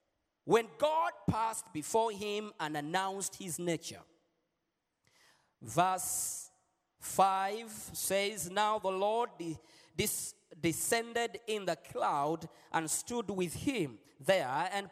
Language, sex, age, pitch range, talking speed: Swedish, male, 40-59, 175-255 Hz, 100 wpm